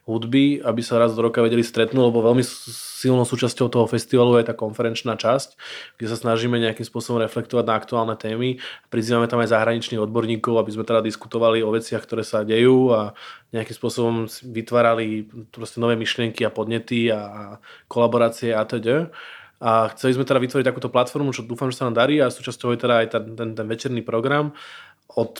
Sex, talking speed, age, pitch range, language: male, 185 wpm, 20-39, 115-125 Hz, English